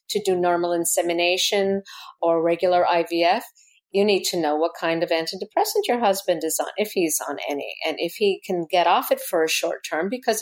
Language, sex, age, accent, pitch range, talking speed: English, female, 50-69, American, 165-210 Hz, 200 wpm